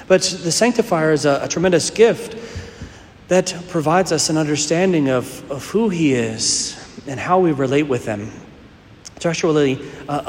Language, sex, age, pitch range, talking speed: English, male, 40-59, 130-170 Hz, 155 wpm